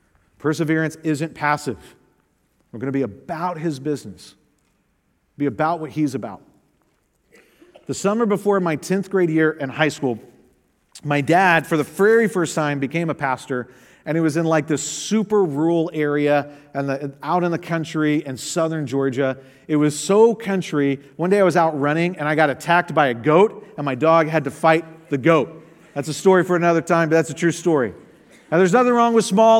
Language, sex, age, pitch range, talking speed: English, male, 40-59, 155-215 Hz, 190 wpm